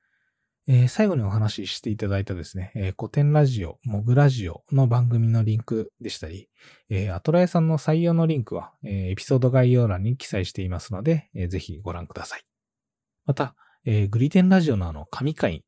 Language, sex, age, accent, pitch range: Japanese, male, 20-39, native, 100-150 Hz